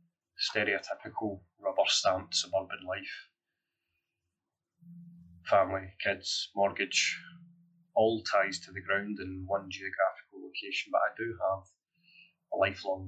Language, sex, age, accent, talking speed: English, male, 30-49, British, 100 wpm